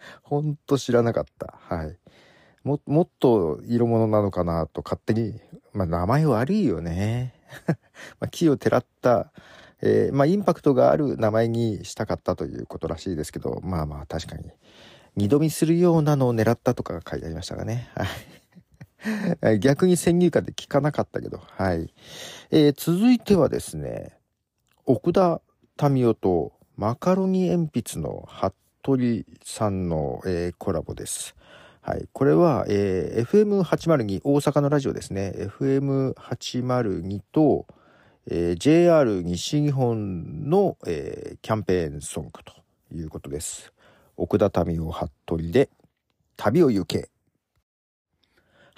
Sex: male